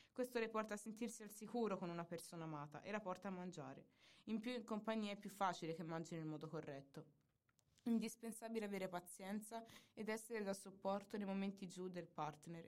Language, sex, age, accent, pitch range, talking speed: Italian, female, 20-39, native, 170-220 Hz, 190 wpm